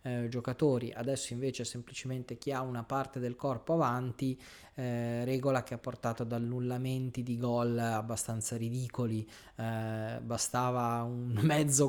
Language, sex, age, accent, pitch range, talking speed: Italian, male, 20-39, native, 115-135 Hz, 135 wpm